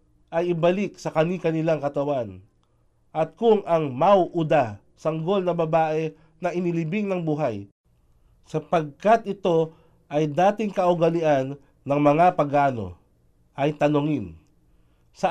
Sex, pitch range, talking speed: male, 145-175 Hz, 105 wpm